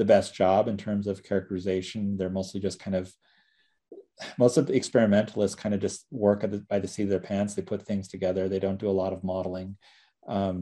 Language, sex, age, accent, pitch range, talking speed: English, male, 30-49, American, 95-110 Hz, 225 wpm